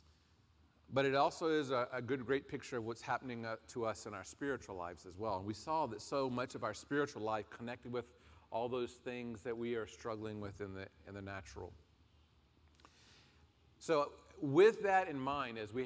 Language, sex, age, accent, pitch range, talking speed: French, male, 40-59, American, 110-155 Hz, 195 wpm